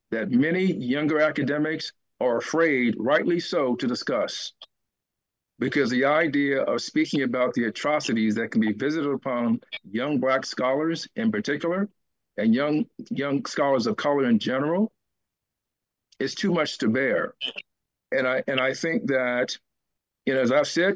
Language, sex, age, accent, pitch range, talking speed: English, male, 50-69, American, 130-170 Hz, 150 wpm